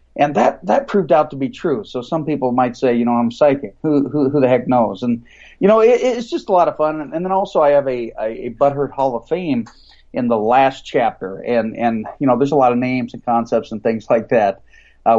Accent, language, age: American, English, 40-59